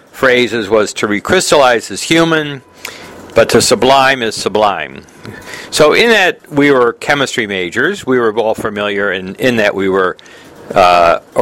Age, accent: 60-79, American